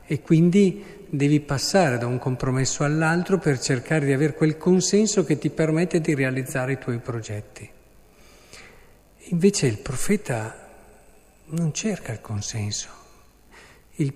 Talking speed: 125 wpm